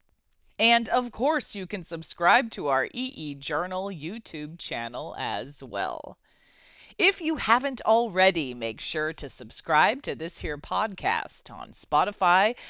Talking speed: 130 wpm